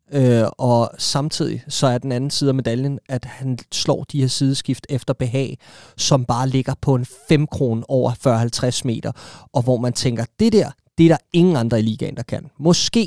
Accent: native